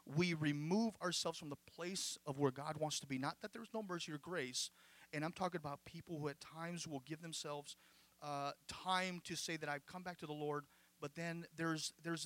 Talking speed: 220 wpm